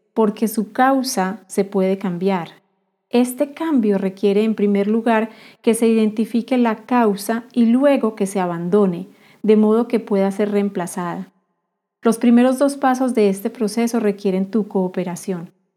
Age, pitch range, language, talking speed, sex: 40-59, 195-225 Hz, Spanish, 145 wpm, female